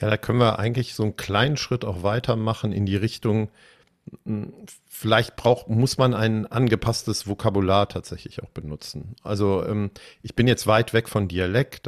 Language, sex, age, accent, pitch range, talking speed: German, male, 50-69, German, 105-125 Hz, 160 wpm